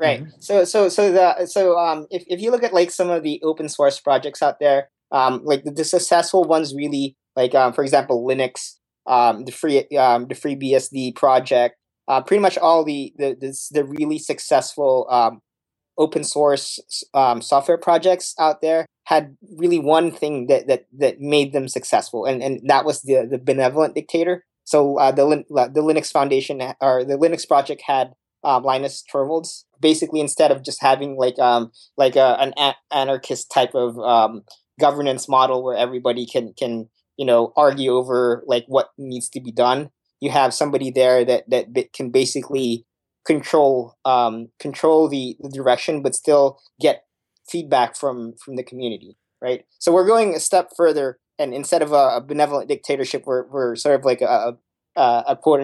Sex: male